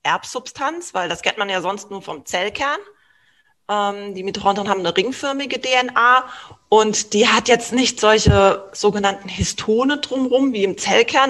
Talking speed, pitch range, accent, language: 155 wpm, 175-235 Hz, German, German